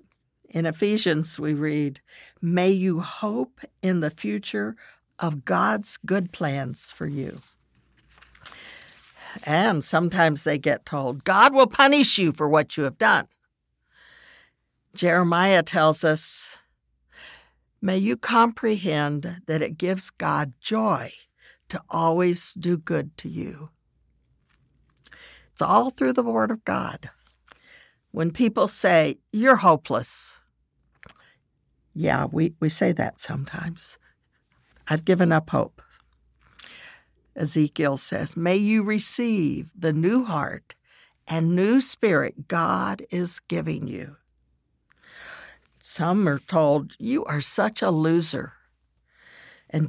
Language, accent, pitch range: English, American, 145-190 Hz